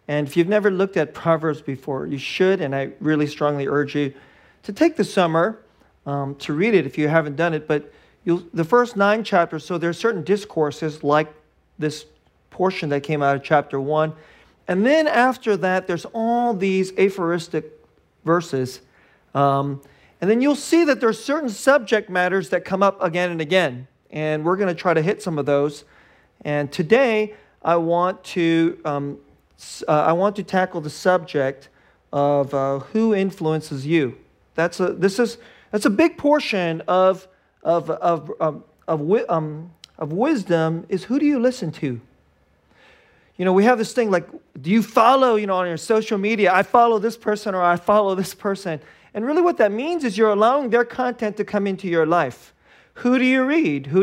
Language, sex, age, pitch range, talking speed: English, male, 40-59, 155-210 Hz, 190 wpm